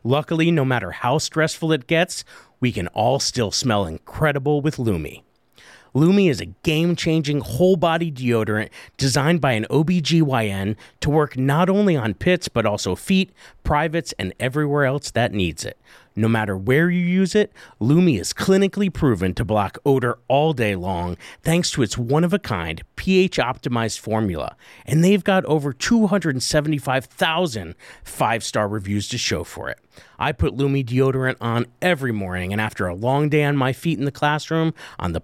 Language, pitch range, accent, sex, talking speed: English, 110-160 Hz, American, male, 160 wpm